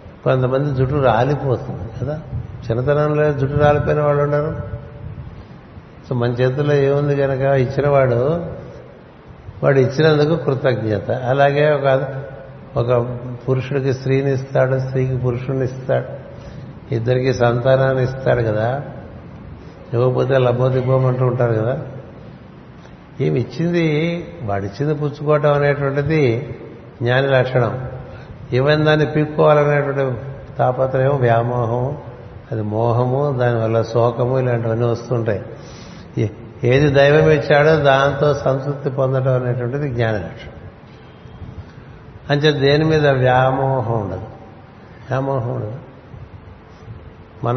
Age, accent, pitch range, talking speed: 60-79, native, 120-140 Hz, 90 wpm